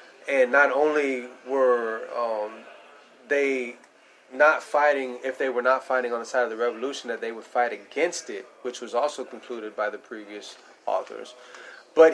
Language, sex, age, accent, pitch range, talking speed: English, male, 30-49, American, 125-160 Hz, 170 wpm